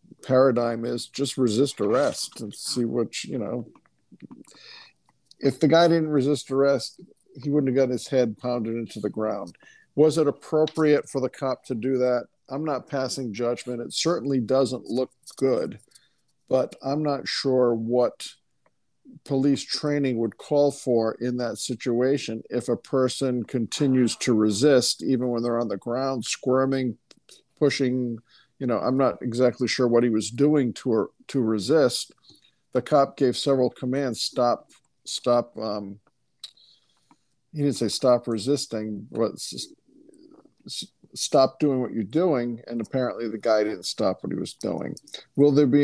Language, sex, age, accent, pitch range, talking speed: English, male, 50-69, American, 115-135 Hz, 155 wpm